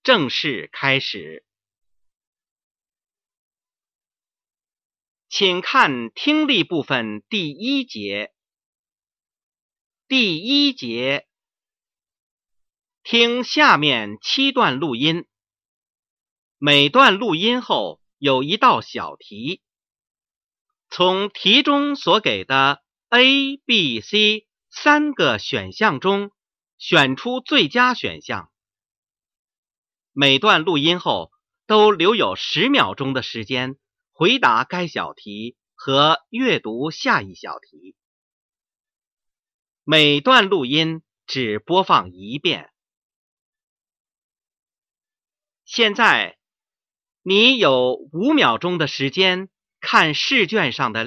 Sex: male